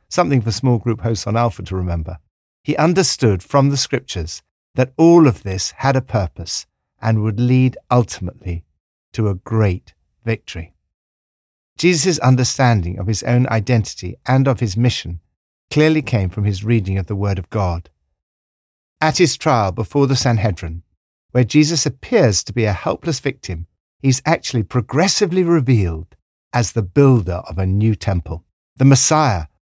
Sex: male